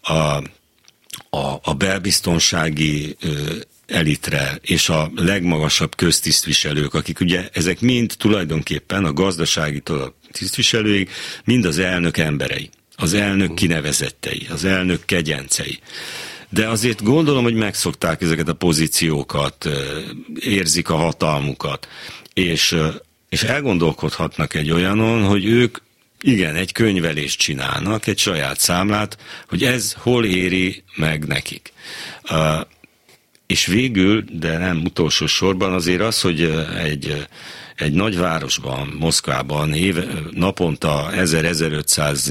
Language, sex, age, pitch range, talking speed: Hungarian, male, 60-79, 75-95 Hz, 110 wpm